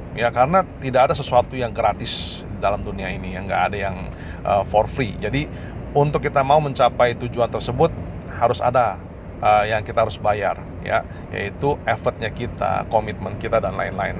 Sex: male